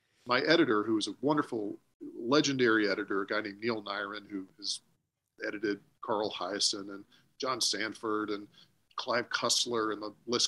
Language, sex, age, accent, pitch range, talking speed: English, male, 40-59, American, 105-140 Hz, 155 wpm